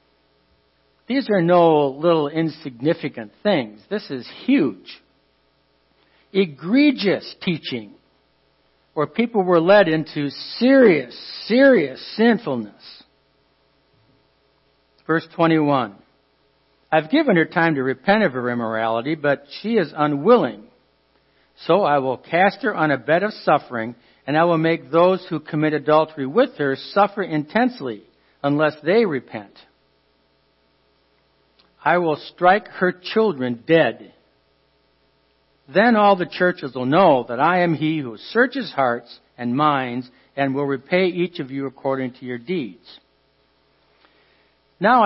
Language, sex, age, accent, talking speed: English, male, 60-79, American, 120 wpm